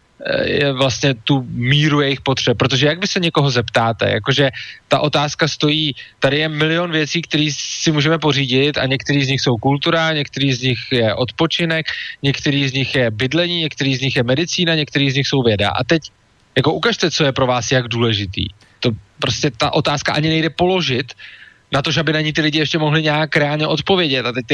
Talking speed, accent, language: 200 wpm, Czech, English